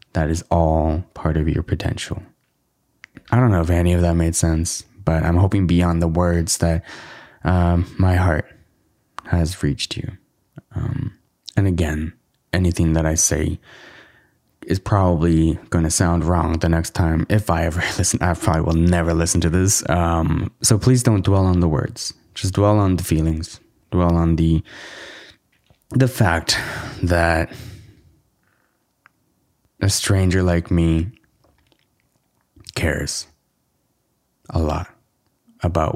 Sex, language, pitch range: male, English, 85-105 Hz